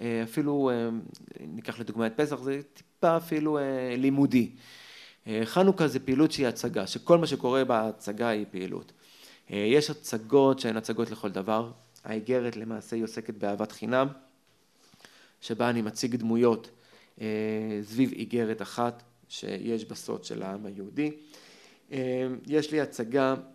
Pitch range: 110-130 Hz